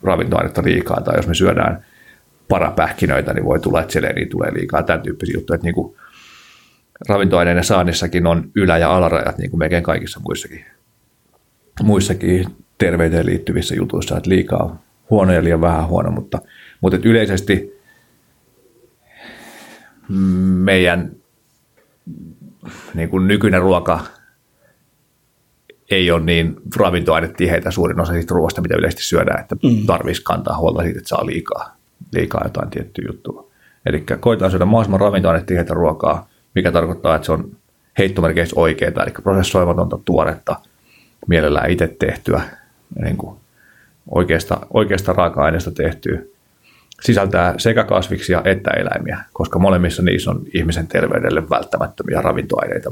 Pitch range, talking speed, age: 85-95 Hz, 120 wpm, 30-49